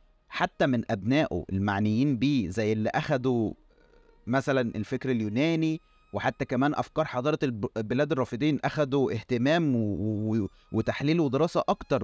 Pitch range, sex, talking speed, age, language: 115-155 Hz, male, 120 wpm, 30-49, Arabic